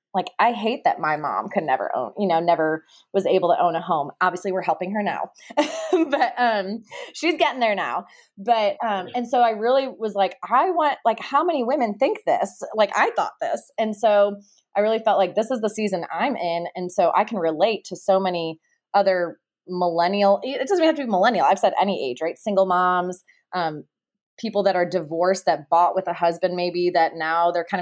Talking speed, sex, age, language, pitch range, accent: 215 wpm, female, 20-39, English, 180-230 Hz, American